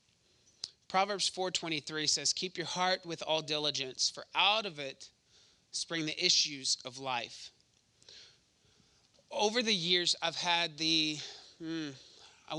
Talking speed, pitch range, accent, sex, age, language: 125 wpm, 150-180 Hz, American, male, 30-49, English